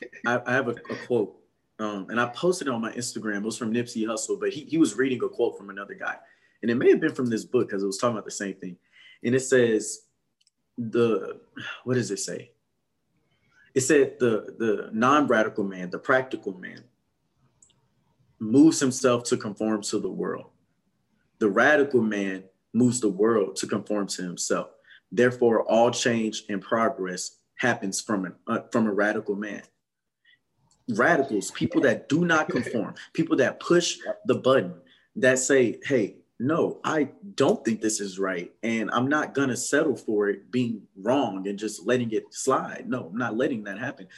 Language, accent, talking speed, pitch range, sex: English, American, 180 wpm, 110-140 Hz, male